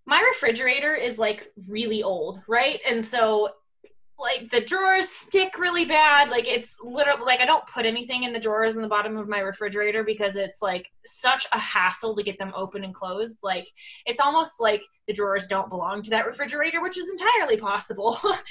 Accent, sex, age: American, female, 20-39